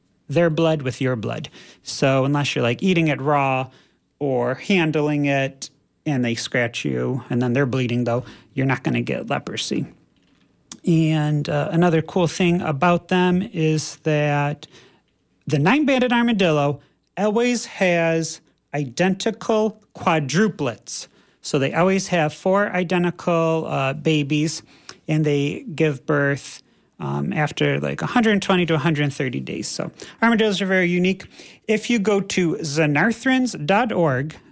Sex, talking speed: male, 130 wpm